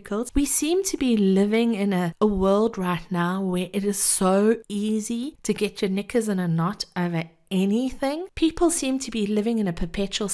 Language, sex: English, female